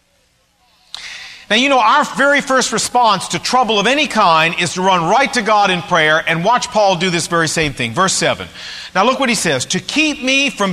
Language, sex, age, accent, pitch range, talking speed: English, male, 50-69, American, 185-270 Hz, 220 wpm